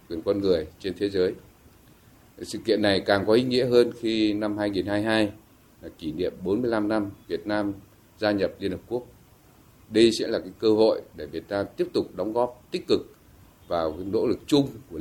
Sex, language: male, Vietnamese